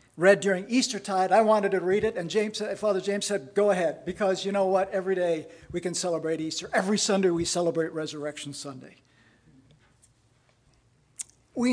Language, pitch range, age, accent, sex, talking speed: English, 155-205 Hz, 50-69, American, male, 165 wpm